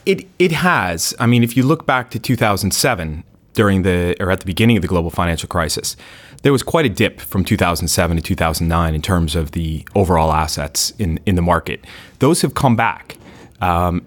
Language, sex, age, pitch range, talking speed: English, male, 30-49, 90-110 Hz, 195 wpm